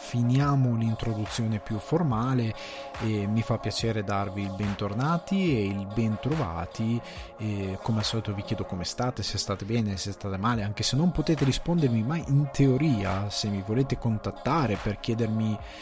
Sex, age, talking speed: male, 20-39, 155 wpm